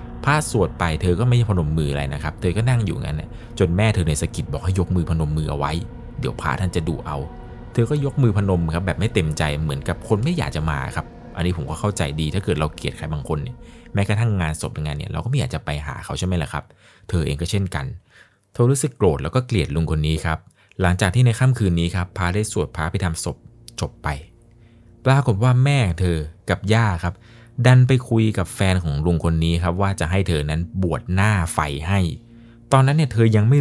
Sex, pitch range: male, 85-120 Hz